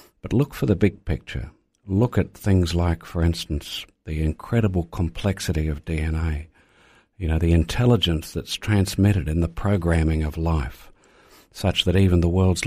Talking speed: 155 wpm